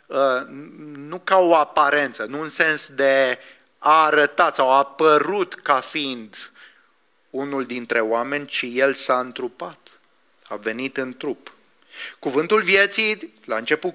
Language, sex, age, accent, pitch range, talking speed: English, male, 30-49, Romanian, 135-195 Hz, 130 wpm